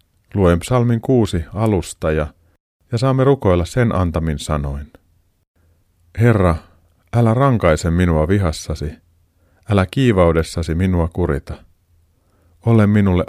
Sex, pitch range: male, 85-105 Hz